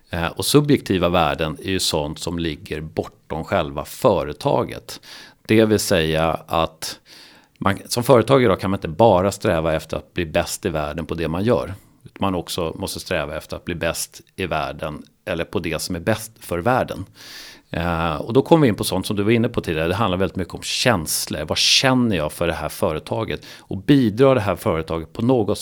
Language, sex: Swedish, male